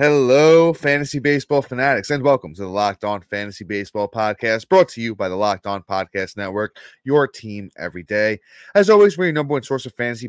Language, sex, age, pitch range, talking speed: English, male, 20-39, 110-165 Hz, 205 wpm